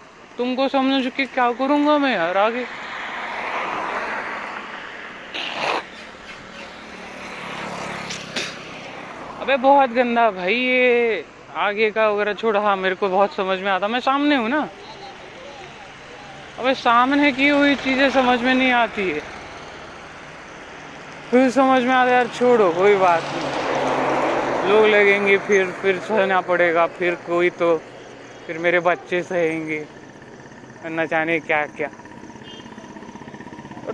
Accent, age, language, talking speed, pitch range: native, 20-39, Marathi, 55 wpm, 185-260 Hz